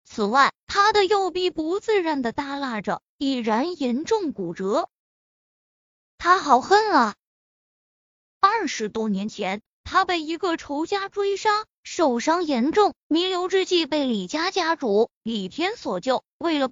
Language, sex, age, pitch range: Chinese, female, 20-39, 245-355 Hz